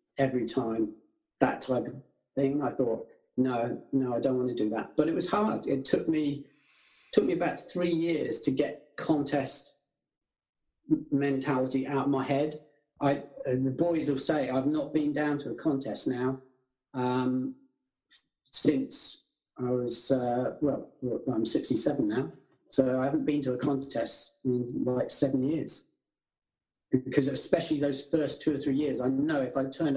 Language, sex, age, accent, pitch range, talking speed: English, male, 40-59, British, 130-165 Hz, 165 wpm